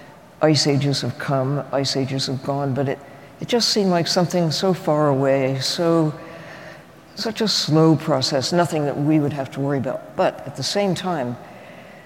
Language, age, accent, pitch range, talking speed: English, 60-79, American, 135-170 Hz, 180 wpm